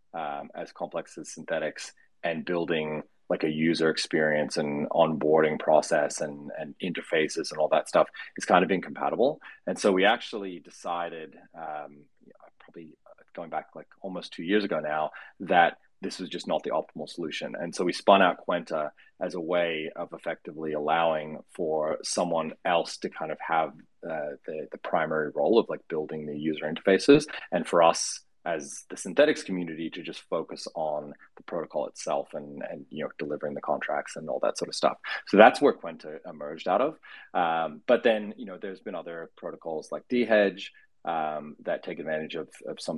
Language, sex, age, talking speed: English, male, 30-49, 180 wpm